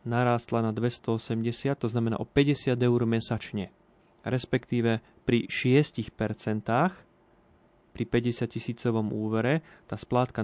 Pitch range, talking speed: 110-125 Hz, 105 wpm